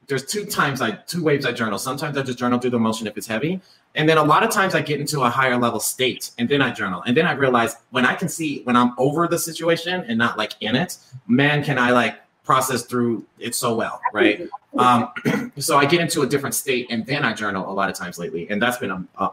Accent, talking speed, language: American, 265 wpm, English